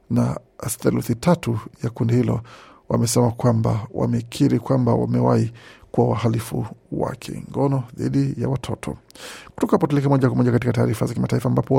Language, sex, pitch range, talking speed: Swahili, male, 120-140 Hz, 135 wpm